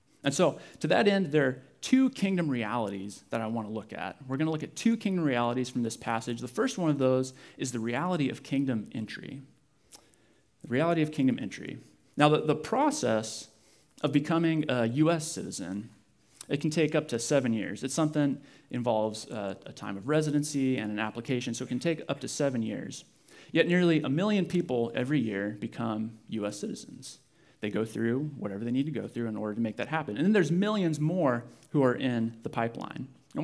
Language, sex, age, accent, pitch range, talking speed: English, male, 30-49, American, 115-160 Hz, 205 wpm